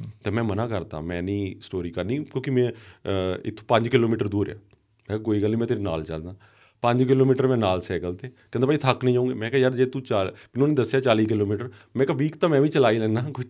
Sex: male